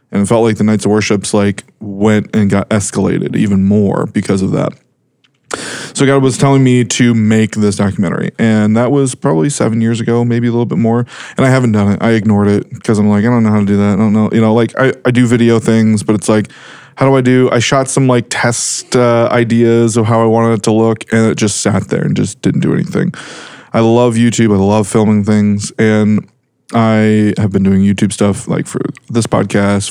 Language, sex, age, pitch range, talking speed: English, male, 20-39, 105-120 Hz, 235 wpm